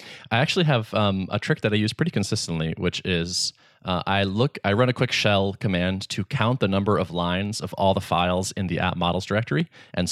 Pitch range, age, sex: 90-115 Hz, 20-39, male